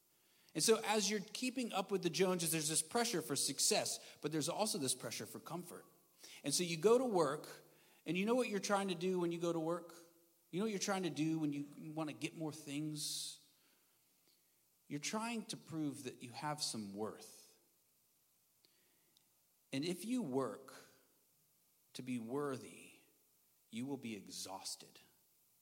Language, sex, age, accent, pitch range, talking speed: English, male, 40-59, American, 135-180 Hz, 175 wpm